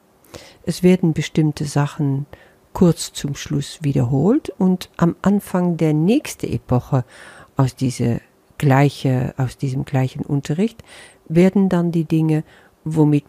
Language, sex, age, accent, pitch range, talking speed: German, female, 50-69, German, 135-180 Hz, 115 wpm